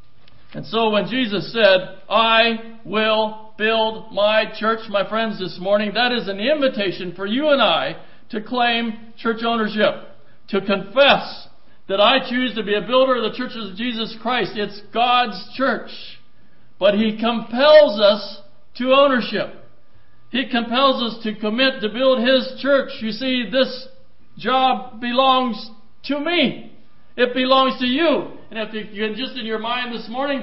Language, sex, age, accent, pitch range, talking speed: English, male, 60-79, American, 200-260 Hz, 160 wpm